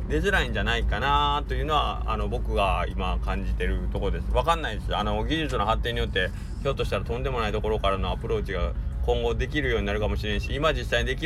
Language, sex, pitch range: Japanese, male, 80-105 Hz